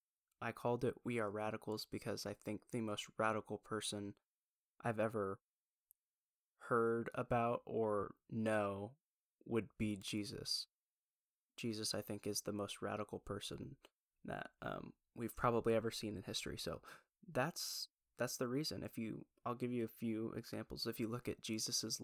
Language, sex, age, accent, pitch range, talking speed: English, male, 10-29, American, 105-115 Hz, 150 wpm